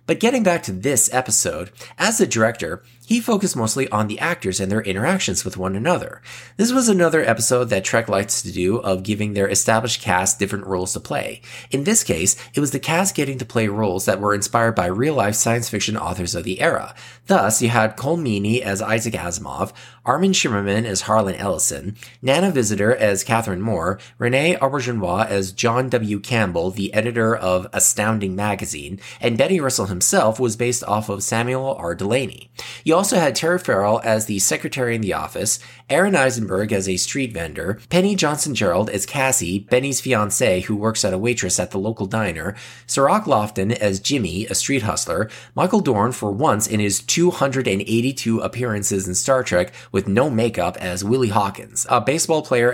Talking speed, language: 185 wpm, English